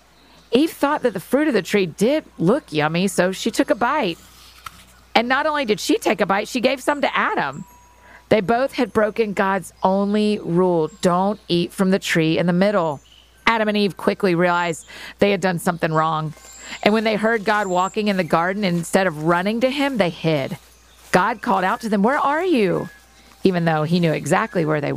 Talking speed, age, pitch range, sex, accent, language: 205 wpm, 40-59, 175-220 Hz, female, American, English